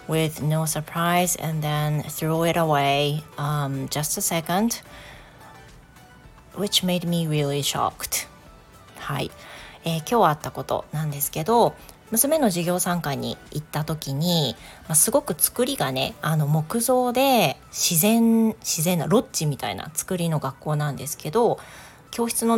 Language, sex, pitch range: Japanese, female, 150-215 Hz